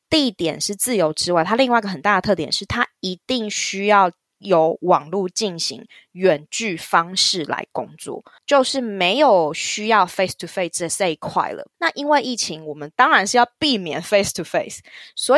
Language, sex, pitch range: Chinese, female, 180-250 Hz